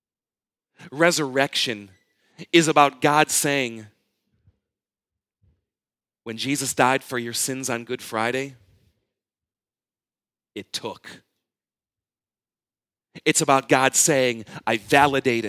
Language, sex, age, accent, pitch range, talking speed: English, male, 40-59, American, 125-180 Hz, 85 wpm